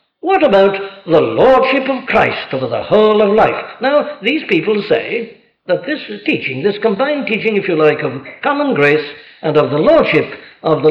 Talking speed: 180 wpm